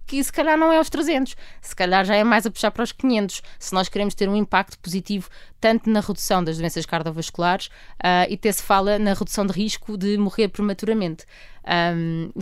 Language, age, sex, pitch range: Portuguese, 20-39, female, 170-220 Hz